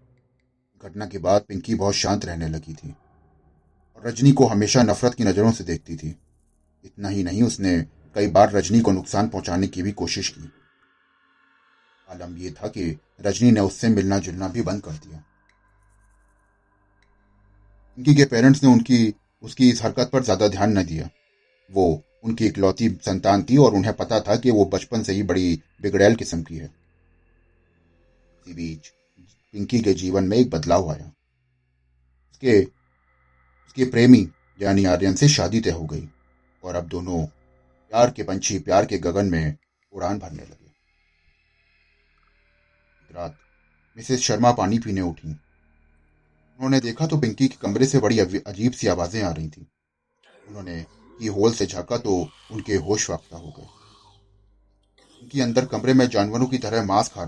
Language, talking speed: Hindi, 155 wpm